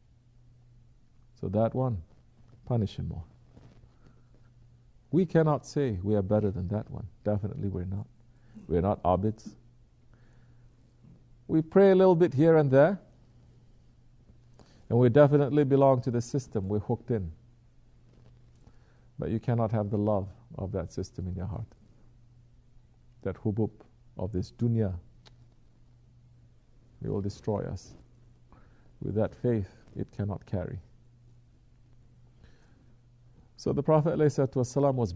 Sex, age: male, 50-69